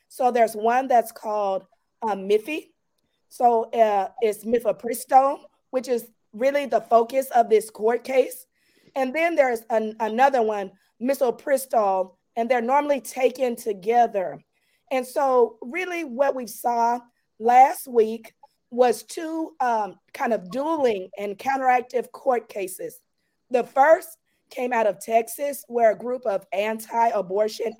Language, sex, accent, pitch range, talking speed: English, female, American, 220-270 Hz, 130 wpm